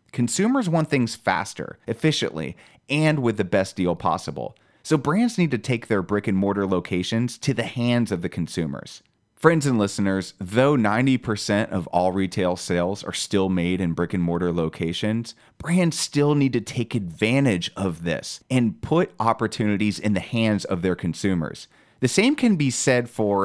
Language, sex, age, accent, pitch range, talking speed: English, male, 30-49, American, 95-135 Hz, 170 wpm